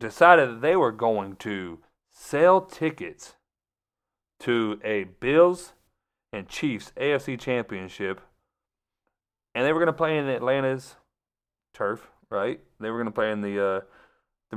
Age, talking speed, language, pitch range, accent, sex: 30-49, 140 wpm, English, 95-130 Hz, American, male